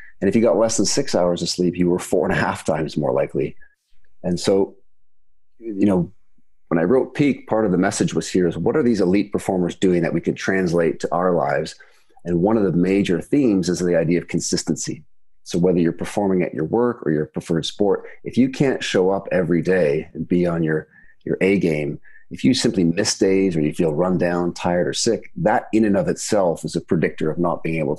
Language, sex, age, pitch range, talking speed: English, male, 40-59, 85-95 Hz, 230 wpm